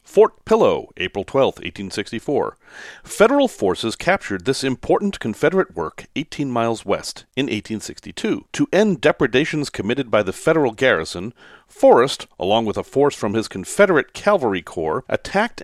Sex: male